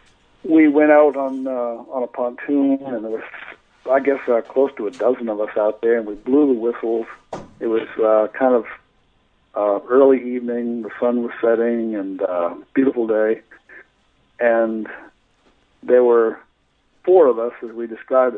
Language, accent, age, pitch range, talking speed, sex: English, American, 60-79, 115-135 Hz, 175 wpm, male